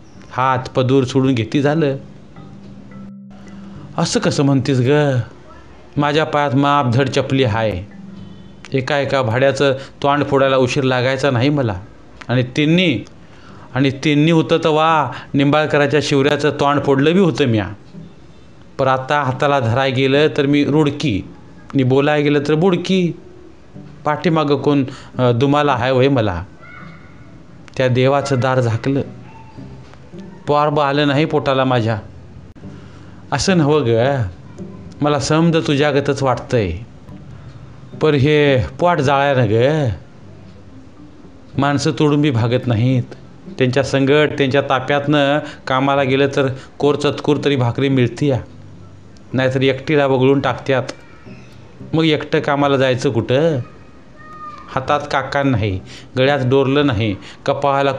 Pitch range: 125-145 Hz